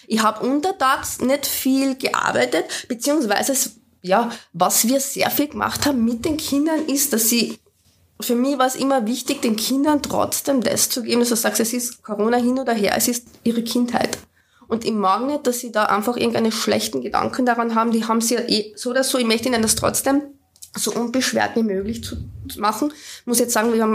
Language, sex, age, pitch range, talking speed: German, female, 20-39, 210-265 Hz, 210 wpm